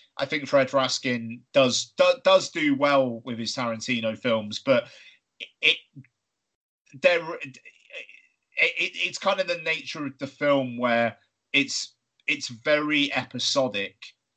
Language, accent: English, British